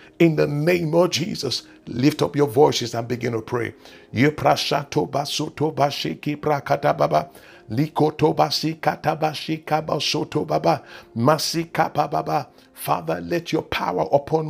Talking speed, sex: 75 wpm, male